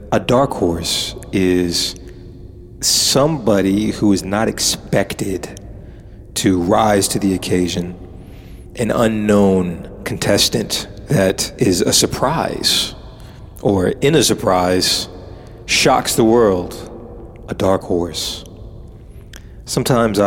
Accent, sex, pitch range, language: American, male, 95-120 Hz, English